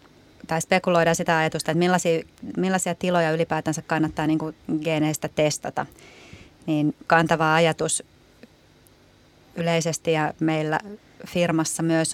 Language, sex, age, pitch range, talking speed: Finnish, female, 30-49, 155-170 Hz, 105 wpm